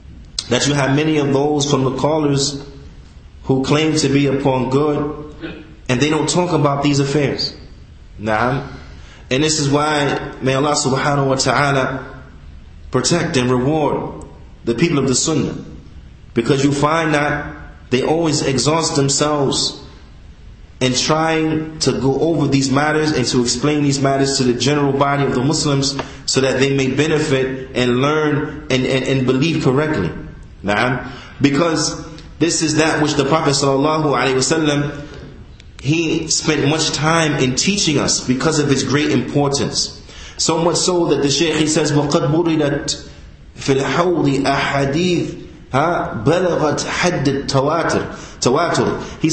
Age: 30-49